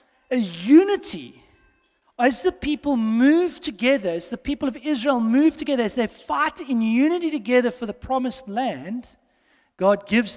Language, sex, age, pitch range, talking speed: English, male, 30-49, 195-275 Hz, 150 wpm